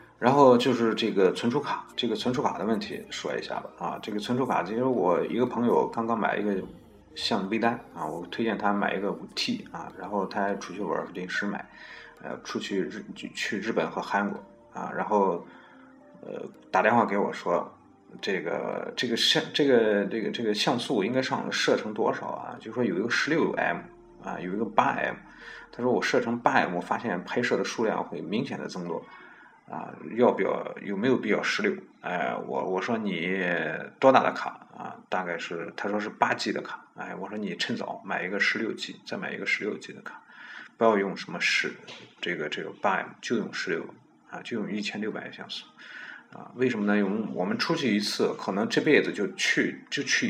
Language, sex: Chinese, male